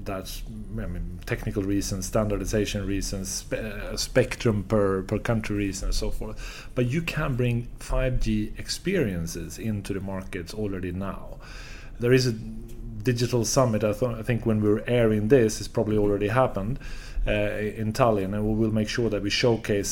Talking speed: 160 wpm